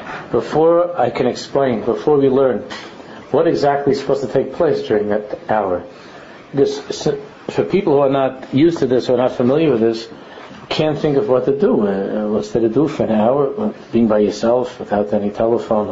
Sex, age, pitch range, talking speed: male, 50-69, 110-135 Hz, 185 wpm